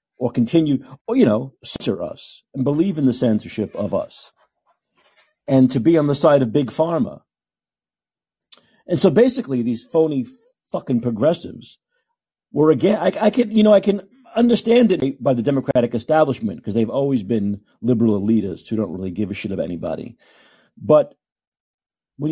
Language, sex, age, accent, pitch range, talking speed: English, male, 50-69, American, 120-165 Hz, 165 wpm